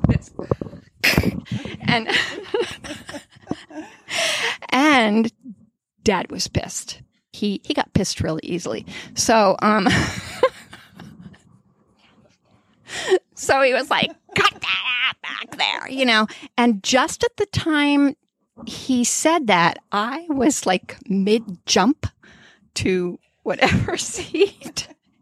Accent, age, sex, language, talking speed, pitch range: American, 40-59, female, English, 95 wpm, 210-305 Hz